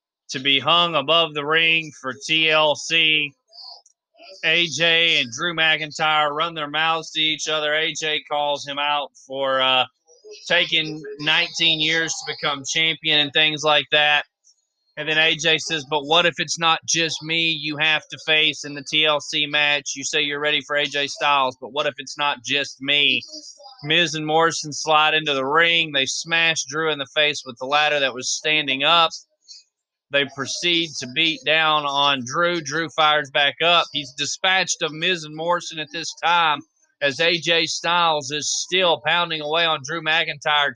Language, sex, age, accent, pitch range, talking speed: English, male, 20-39, American, 145-165 Hz, 170 wpm